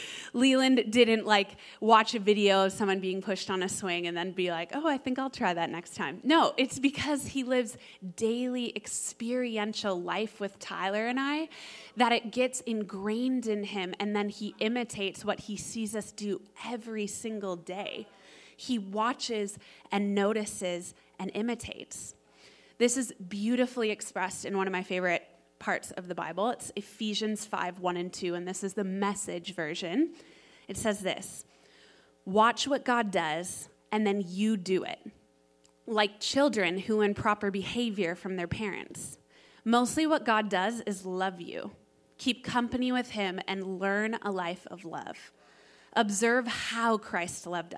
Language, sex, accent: English, female, American